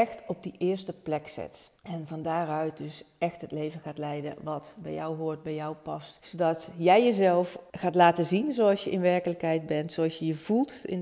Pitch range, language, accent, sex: 155-185 Hz, Dutch, Dutch, female